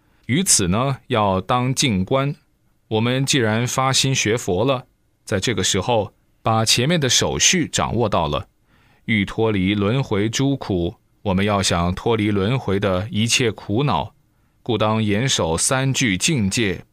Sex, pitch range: male, 100-125 Hz